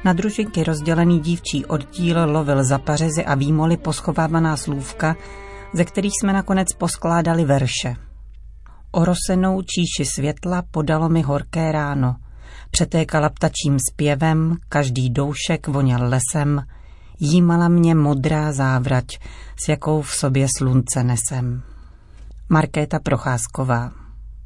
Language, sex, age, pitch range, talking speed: Czech, female, 40-59, 135-165 Hz, 110 wpm